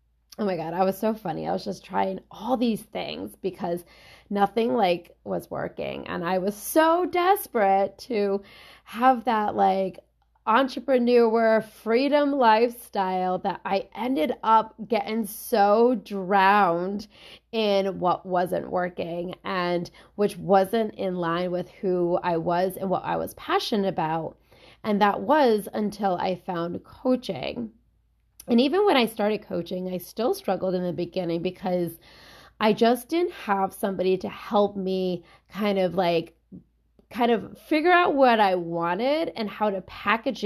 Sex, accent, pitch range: female, American, 185-230 Hz